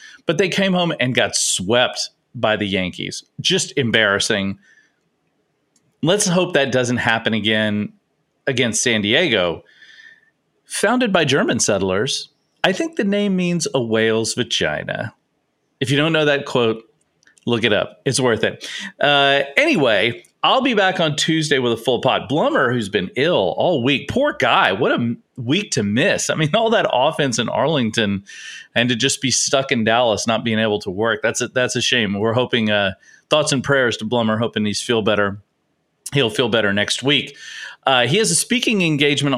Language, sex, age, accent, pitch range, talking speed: English, male, 40-59, American, 115-165 Hz, 175 wpm